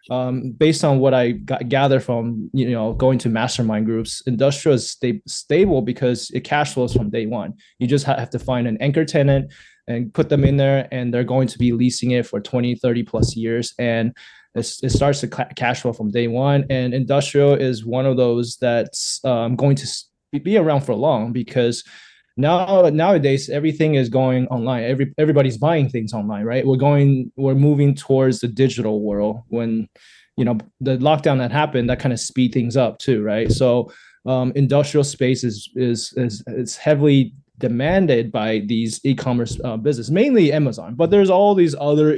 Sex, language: male, English